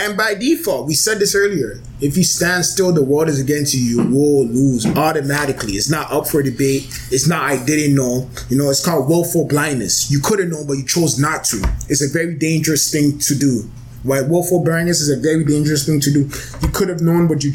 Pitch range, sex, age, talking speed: 135-180 Hz, male, 20-39, 235 wpm